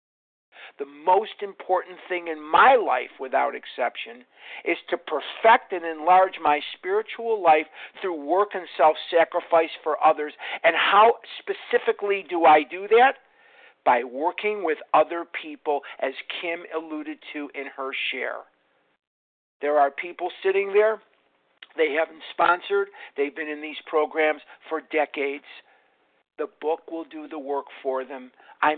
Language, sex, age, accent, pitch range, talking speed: English, male, 50-69, American, 150-205 Hz, 140 wpm